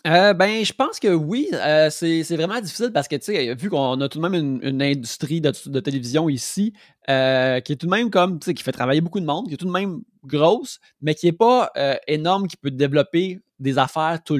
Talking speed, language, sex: 255 wpm, French, male